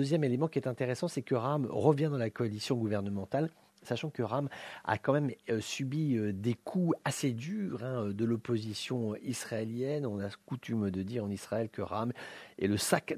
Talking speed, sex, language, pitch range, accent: 180 wpm, male, English, 100-135 Hz, French